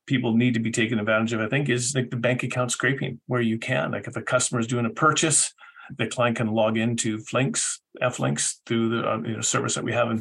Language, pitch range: English, 110-130 Hz